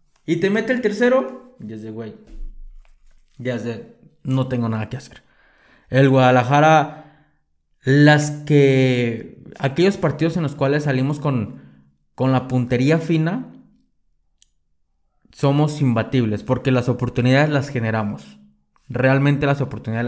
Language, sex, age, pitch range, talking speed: Spanish, male, 20-39, 120-160 Hz, 120 wpm